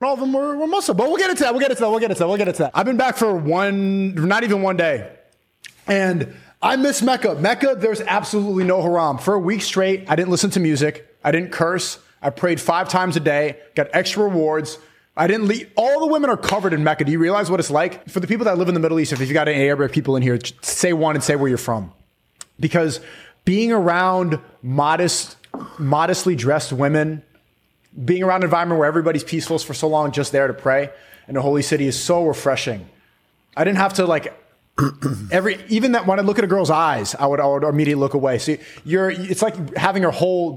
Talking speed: 235 wpm